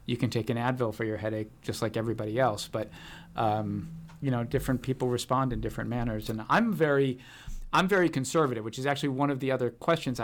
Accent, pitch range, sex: American, 115-135 Hz, male